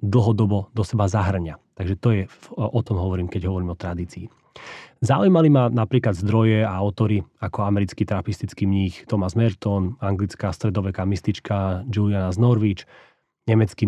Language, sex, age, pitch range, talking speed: Slovak, male, 30-49, 100-120 Hz, 140 wpm